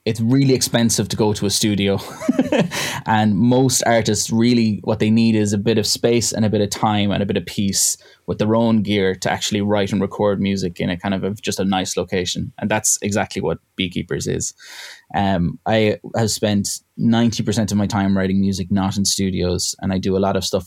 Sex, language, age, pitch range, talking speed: male, English, 10-29, 95-110 Hz, 220 wpm